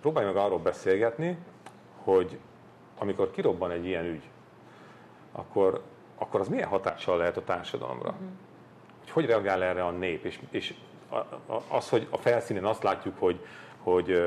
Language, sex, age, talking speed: Hungarian, male, 40-59, 140 wpm